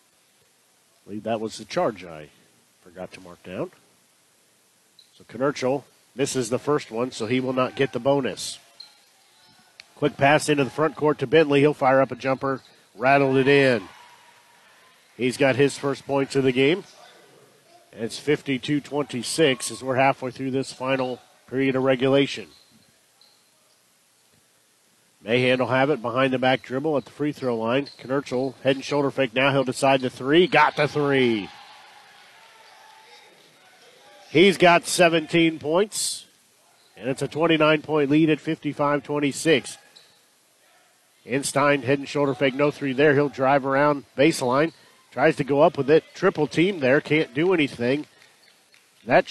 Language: English